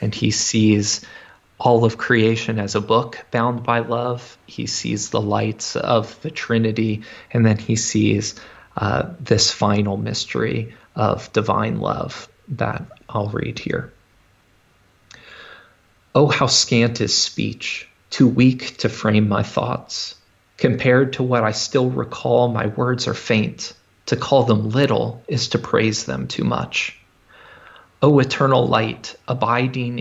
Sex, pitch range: male, 110-125 Hz